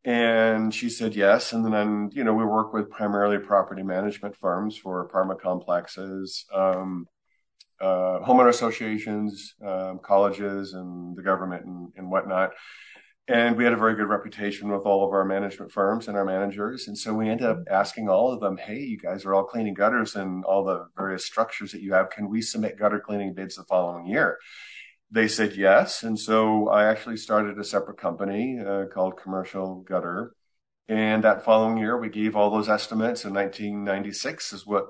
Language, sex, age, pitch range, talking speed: English, male, 40-59, 95-110 Hz, 185 wpm